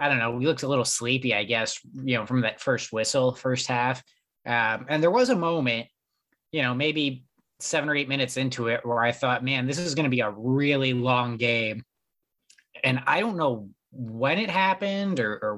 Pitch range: 125-165 Hz